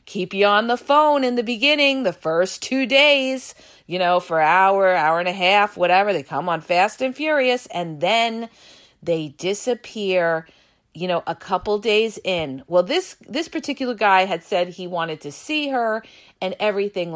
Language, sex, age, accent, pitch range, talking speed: English, female, 40-59, American, 180-260 Hz, 180 wpm